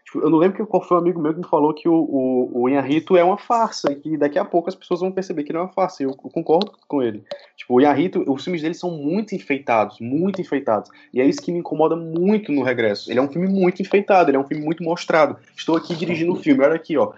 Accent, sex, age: Brazilian, male, 20-39